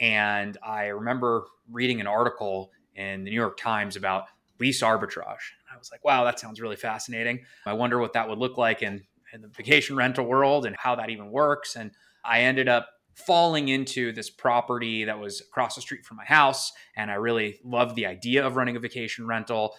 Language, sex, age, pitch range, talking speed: English, male, 20-39, 105-120 Hz, 205 wpm